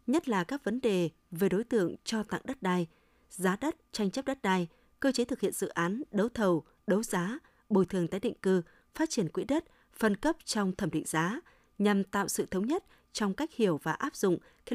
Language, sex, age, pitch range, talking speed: Vietnamese, female, 20-39, 180-235 Hz, 225 wpm